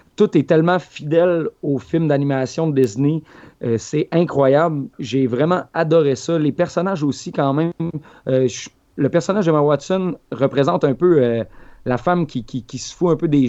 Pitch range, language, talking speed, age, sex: 130-155 Hz, French, 185 wpm, 30-49, male